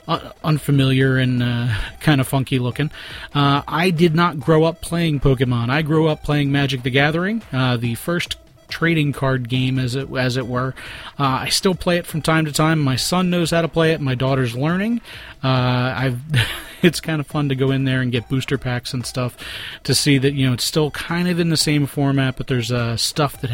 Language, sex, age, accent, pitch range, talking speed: English, male, 30-49, American, 130-160 Hz, 220 wpm